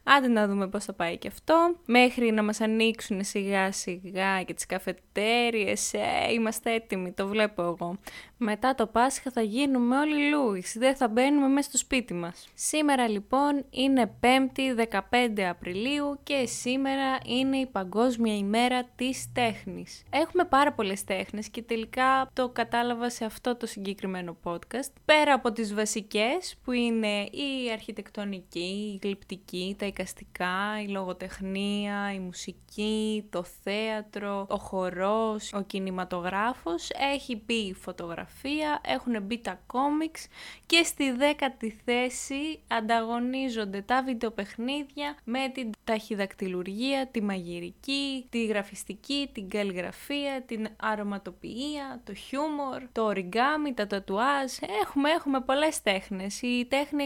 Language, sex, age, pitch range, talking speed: Greek, female, 20-39, 200-265 Hz, 150 wpm